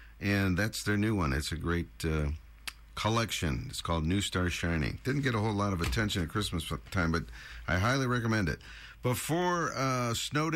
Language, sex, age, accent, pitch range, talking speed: English, male, 50-69, American, 95-135 Hz, 190 wpm